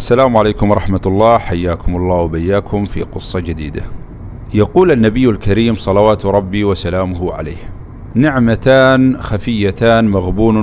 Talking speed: 115 wpm